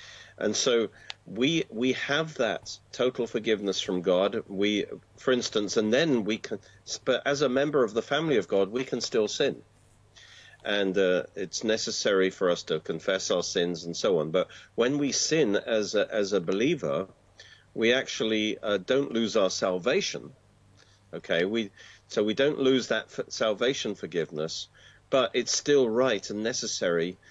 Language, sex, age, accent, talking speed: English, male, 50-69, British, 160 wpm